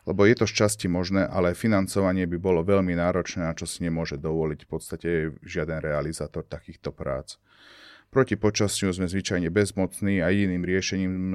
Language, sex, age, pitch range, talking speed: Slovak, male, 30-49, 85-100 Hz, 160 wpm